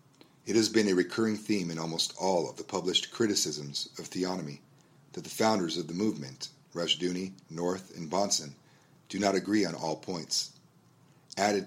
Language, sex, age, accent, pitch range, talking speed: English, male, 40-59, American, 80-100 Hz, 170 wpm